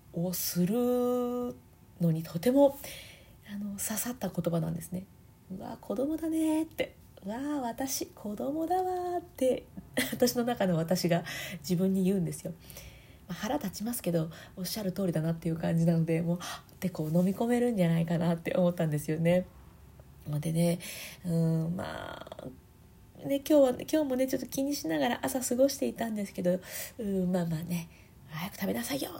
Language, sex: Japanese, female